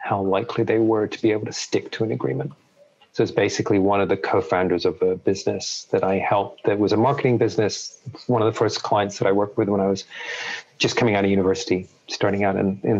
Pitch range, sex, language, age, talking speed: 100-125 Hz, male, English, 40-59, 235 wpm